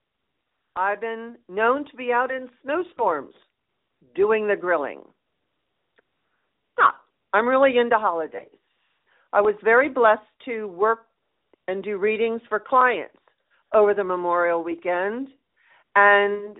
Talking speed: 115 wpm